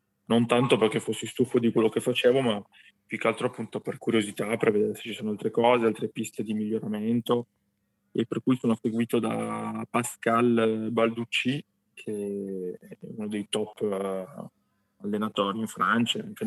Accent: native